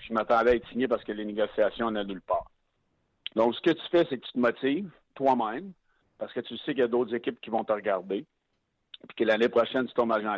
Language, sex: French, male